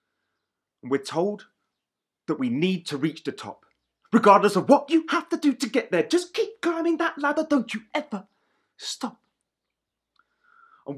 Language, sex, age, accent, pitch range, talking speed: English, male, 30-49, British, 185-255 Hz, 165 wpm